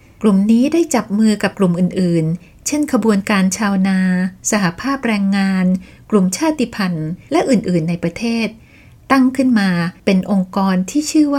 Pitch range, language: 190-245 Hz, Thai